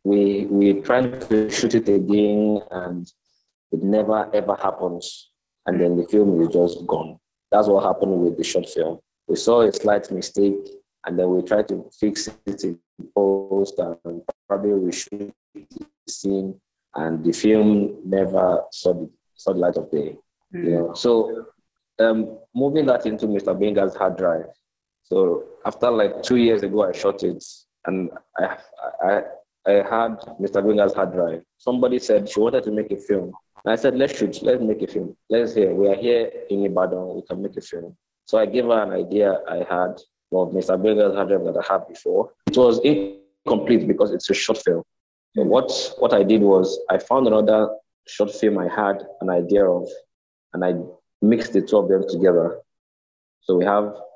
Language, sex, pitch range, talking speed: English, male, 90-110 Hz, 185 wpm